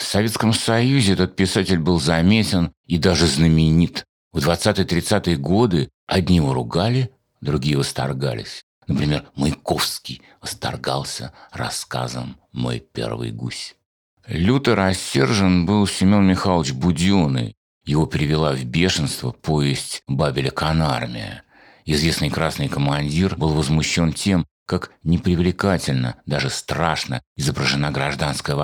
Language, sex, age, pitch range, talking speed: Russian, male, 60-79, 70-95 Hz, 105 wpm